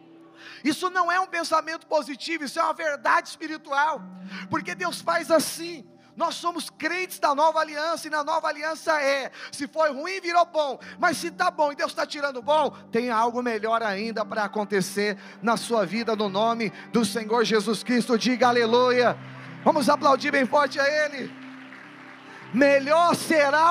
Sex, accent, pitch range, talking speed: male, Brazilian, 235-305 Hz, 165 wpm